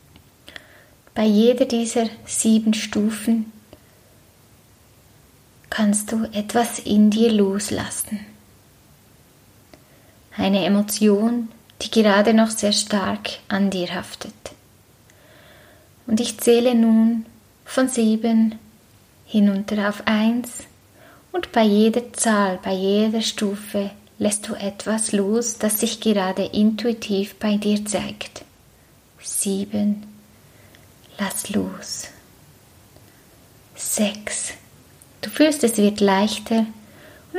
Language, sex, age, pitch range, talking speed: German, female, 20-39, 200-225 Hz, 95 wpm